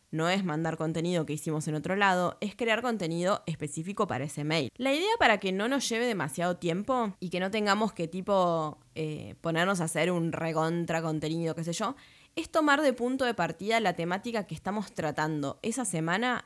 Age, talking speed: 20-39, 195 wpm